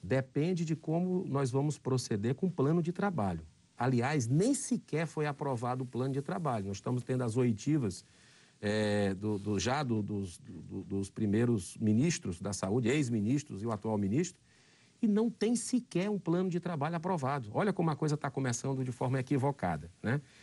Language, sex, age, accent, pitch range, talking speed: Portuguese, male, 50-69, Brazilian, 120-160 Hz, 165 wpm